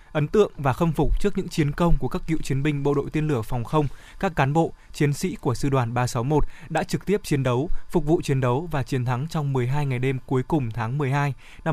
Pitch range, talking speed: 130-160 Hz, 255 wpm